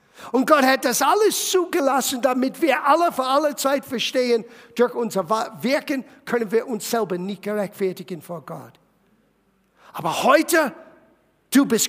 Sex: male